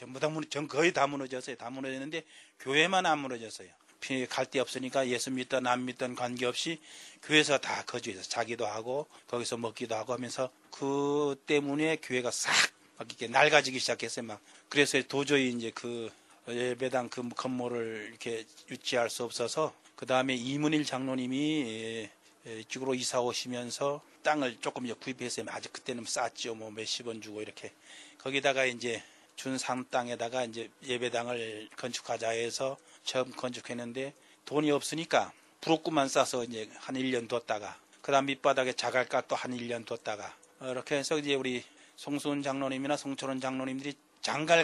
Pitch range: 120-140 Hz